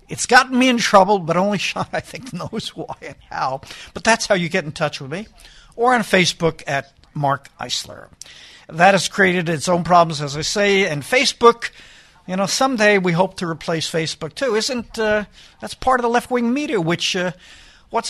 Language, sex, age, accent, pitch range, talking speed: English, male, 60-79, American, 160-215 Hz, 200 wpm